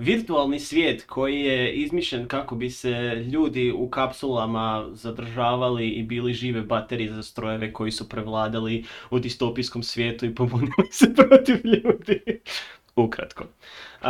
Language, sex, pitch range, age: Croatian, male, 110-135 Hz, 20-39